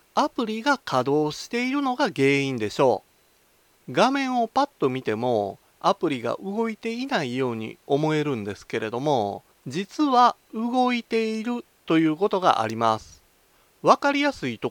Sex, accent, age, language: male, native, 30-49, Japanese